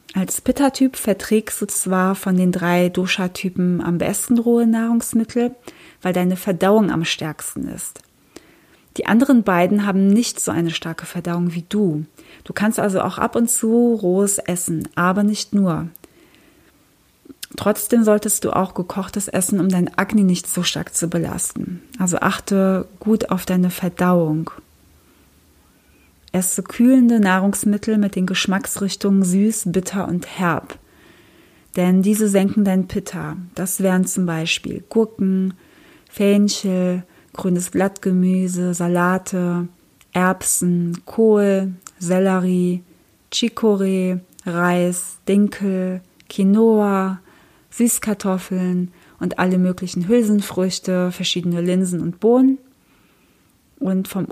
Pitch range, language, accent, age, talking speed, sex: 180-210 Hz, German, German, 30-49, 115 wpm, female